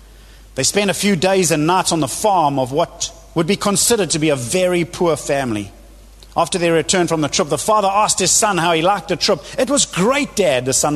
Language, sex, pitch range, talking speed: English, male, 155-225 Hz, 235 wpm